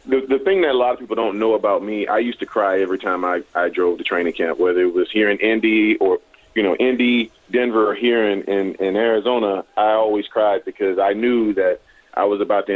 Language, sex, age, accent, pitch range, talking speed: English, male, 30-49, American, 100-115 Hz, 245 wpm